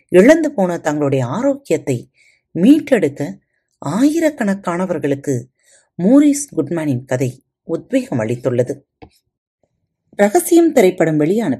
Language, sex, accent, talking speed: Tamil, female, native, 70 wpm